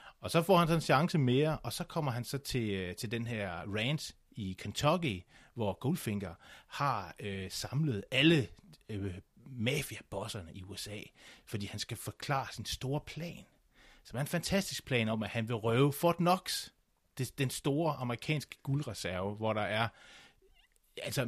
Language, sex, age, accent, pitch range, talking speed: Danish, male, 30-49, native, 100-135 Hz, 160 wpm